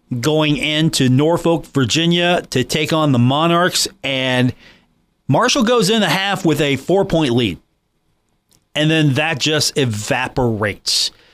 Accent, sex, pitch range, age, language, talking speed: American, male, 130-160 Hz, 40-59, English, 125 wpm